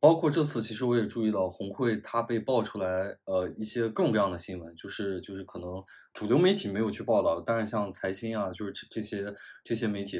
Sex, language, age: male, Chinese, 20-39